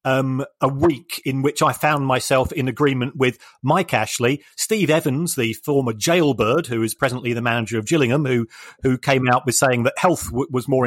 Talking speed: 200 wpm